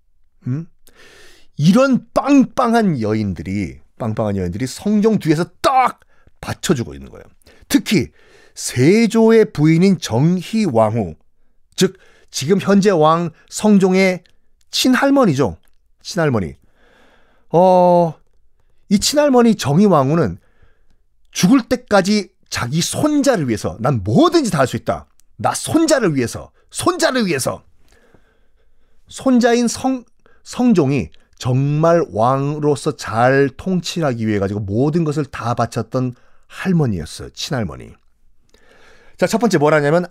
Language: Korean